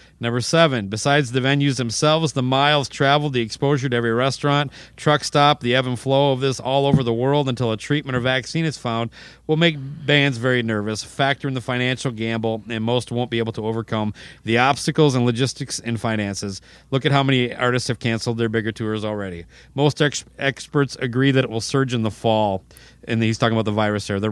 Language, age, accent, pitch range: English, 40-59, American, 115-140 Hz